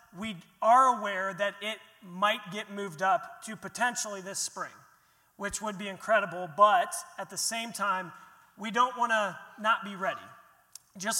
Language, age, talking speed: English, 30-49, 160 wpm